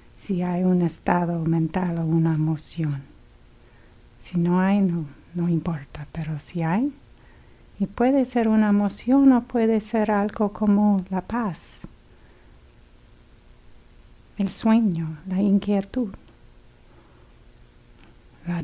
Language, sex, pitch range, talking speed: English, female, 155-200 Hz, 110 wpm